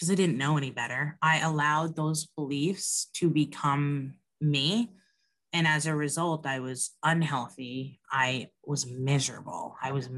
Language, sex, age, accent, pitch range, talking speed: English, female, 20-39, American, 140-175 Hz, 145 wpm